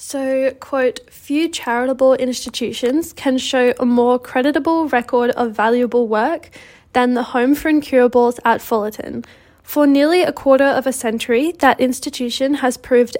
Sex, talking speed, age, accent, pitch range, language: female, 145 wpm, 10-29, Australian, 235-275 Hz, English